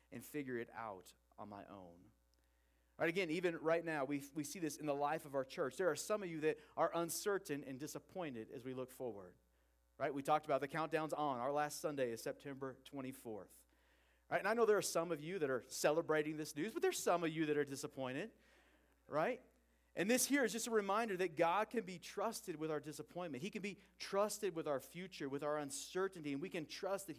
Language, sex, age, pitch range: English, male, 40-59, 125-175 Hz